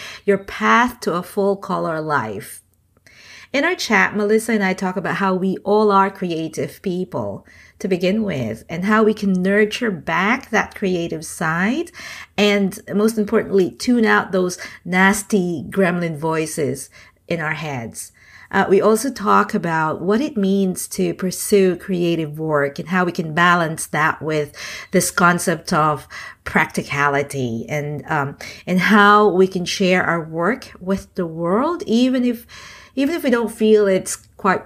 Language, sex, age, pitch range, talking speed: English, female, 50-69, 170-220 Hz, 150 wpm